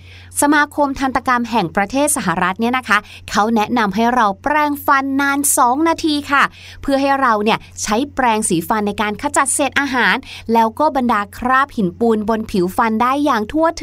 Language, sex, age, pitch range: Thai, female, 20-39, 215-300 Hz